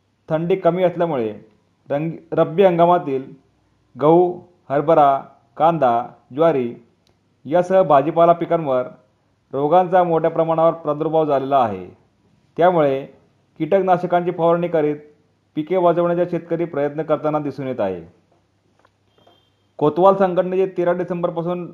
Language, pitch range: Marathi, 130-175 Hz